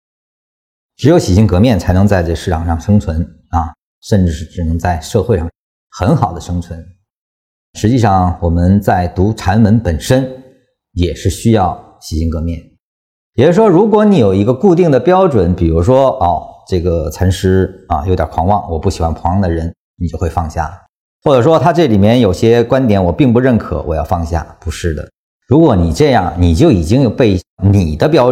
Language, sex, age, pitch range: Chinese, male, 50-69, 85-110 Hz